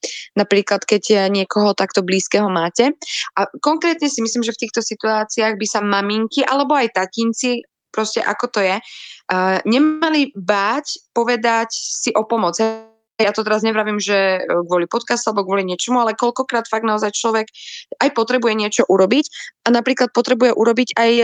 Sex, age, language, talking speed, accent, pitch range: female, 20-39, Czech, 155 wpm, native, 215-255 Hz